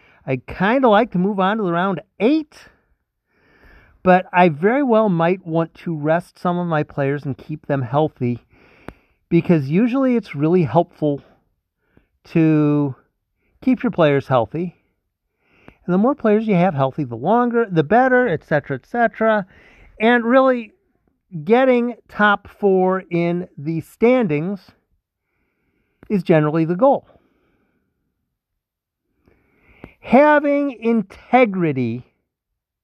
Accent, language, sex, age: American, English, male, 50-69